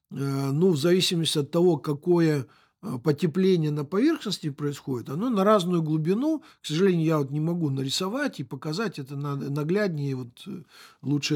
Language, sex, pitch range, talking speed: Russian, male, 145-190 Hz, 145 wpm